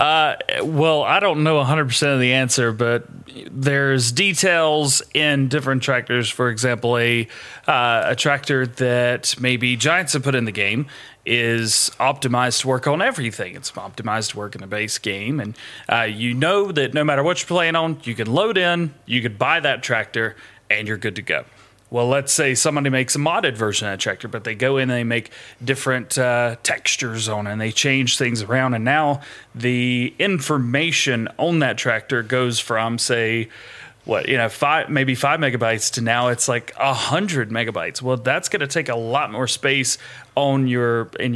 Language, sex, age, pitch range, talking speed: English, male, 30-49, 120-140 Hz, 190 wpm